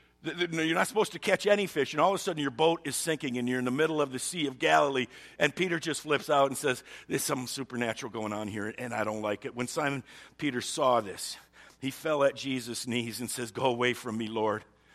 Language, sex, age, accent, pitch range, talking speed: English, male, 50-69, American, 105-130 Hz, 245 wpm